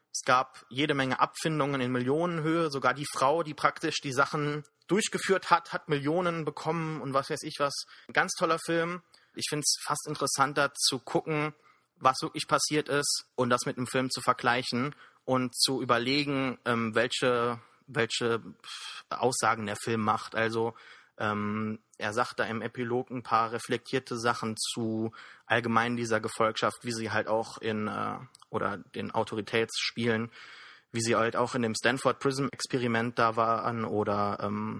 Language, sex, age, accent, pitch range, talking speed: German, male, 30-49, German, 115-145 Hz, 160 wpm